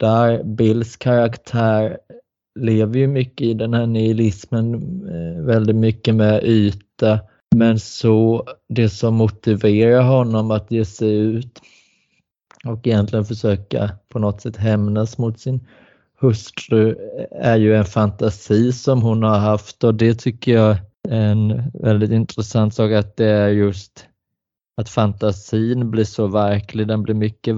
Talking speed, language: 135 wpm, Swedish